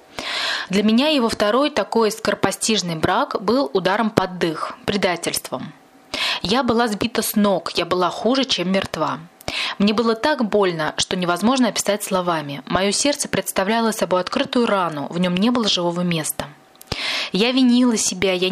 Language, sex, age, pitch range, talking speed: Russian, female, 20-39, 180-235 Hz, 150 wpm